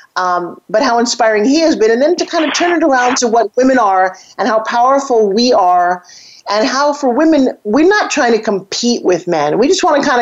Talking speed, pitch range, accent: 235 wpm, 200-270 Hz, American